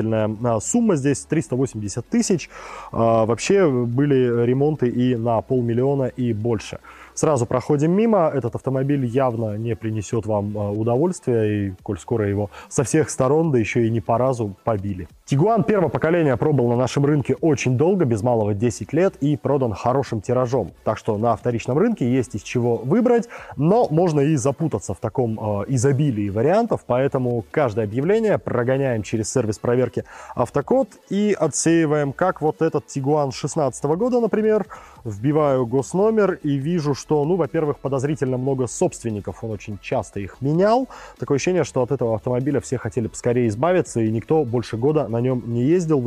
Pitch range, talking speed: 115-155 Hz, 160 wpm